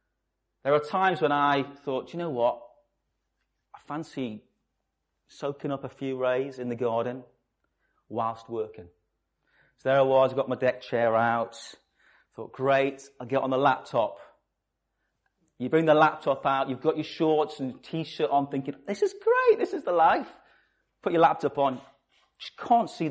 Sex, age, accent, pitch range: male, 30-49, British, 120-175 Hz